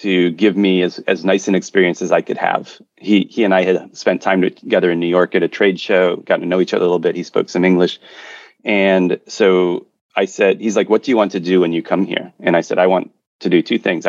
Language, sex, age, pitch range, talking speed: English, male, 30-49, 90-100 Hz, 275 wpm